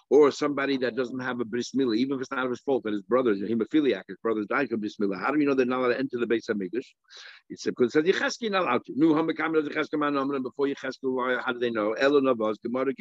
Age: 60-79